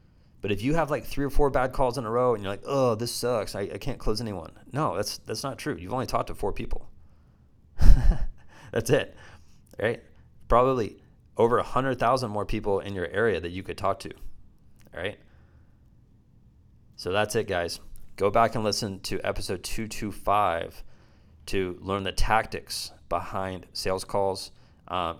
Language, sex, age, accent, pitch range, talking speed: English, male, 30-49, American, 90-110 Hz, 170 wpm